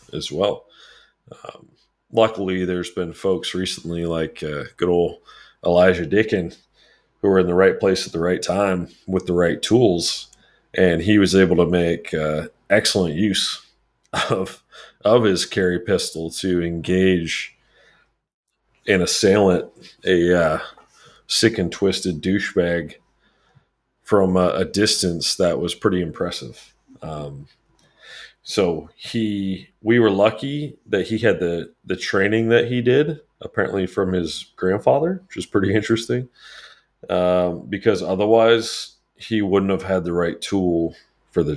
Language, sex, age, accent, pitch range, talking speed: English, male, 40-59, American, 85-100 Hz, 135 wpm